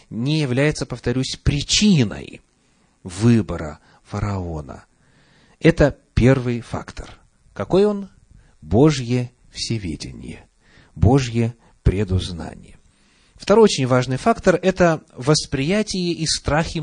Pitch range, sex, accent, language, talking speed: 105-160 Hz, male, native, Russian, 85 wpm